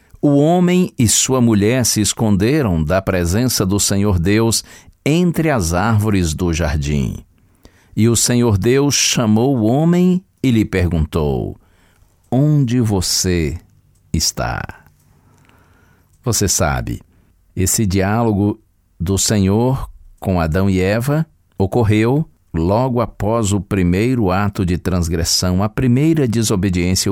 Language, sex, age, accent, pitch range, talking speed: Portuguese, male, 60-79, Brazilian, 90-115 Hz, 115 wpm